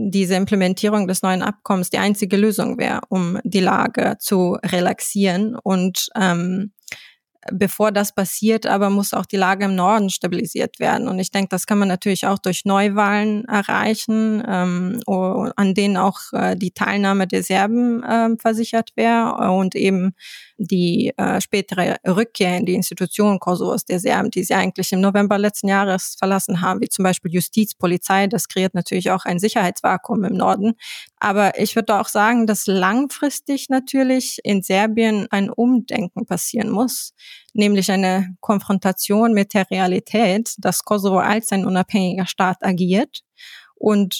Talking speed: 155 wpm